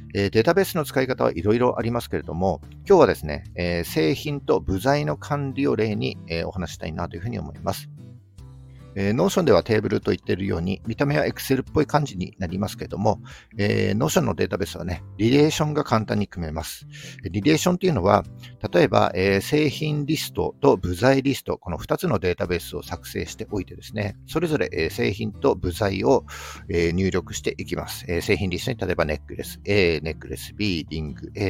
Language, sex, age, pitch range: Japanese, male, 50-69, 85-130 Hz